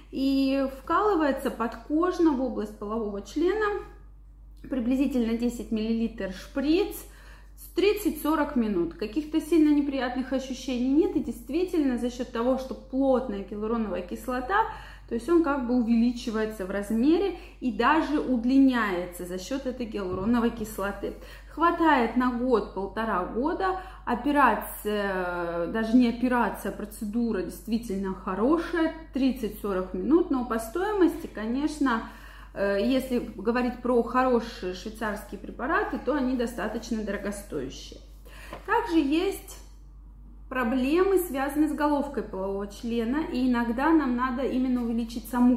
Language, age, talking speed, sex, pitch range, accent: Russian, 20-39, 115 wpm, female, 220-295 Hz, native